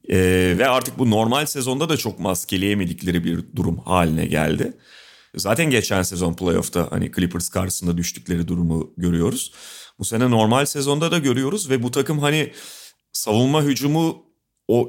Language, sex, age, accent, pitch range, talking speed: Turkish, male, 40-59, native, 110-145 Hz, 145 wpm